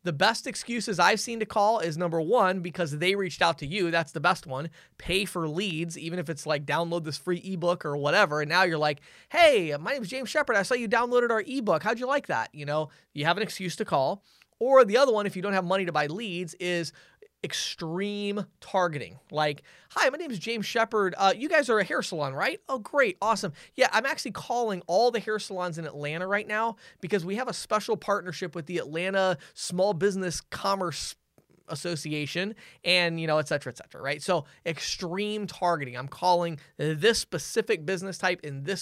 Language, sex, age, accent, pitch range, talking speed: English, male, 20-39, American, 160-210 Hz, 210 wpm